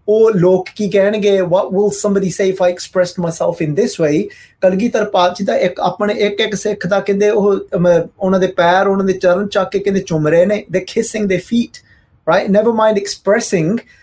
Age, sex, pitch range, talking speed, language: 20-39, male, 160-210 Hz, 195 wpm, Punjabi